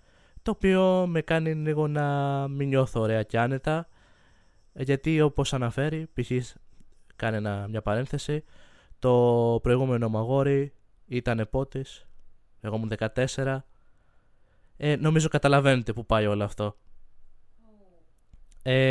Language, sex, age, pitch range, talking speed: Greek, male, 20-39, 110-145 Hz, 110 wpm